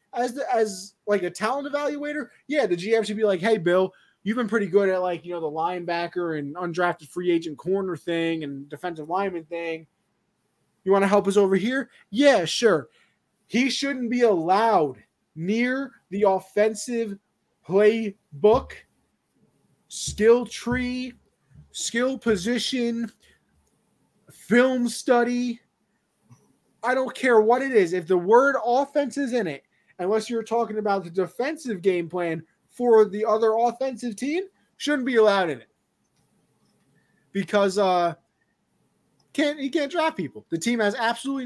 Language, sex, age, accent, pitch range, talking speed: English, male, 20-39, American, 180-245 Hz, 145 wpm